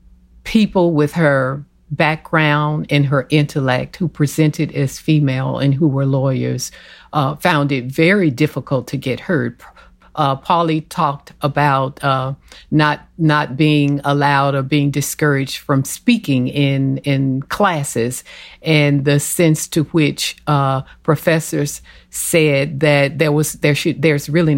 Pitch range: 135-155 Hz